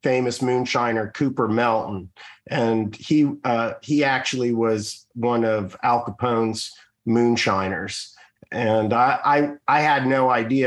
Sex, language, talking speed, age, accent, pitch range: male, English, 125 wpm, 40-59, American, 105-120 Hz